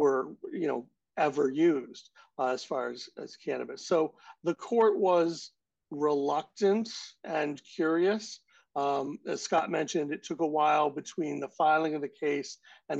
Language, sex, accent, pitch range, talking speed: English, male, American, 140-175 Hz, 150 wpm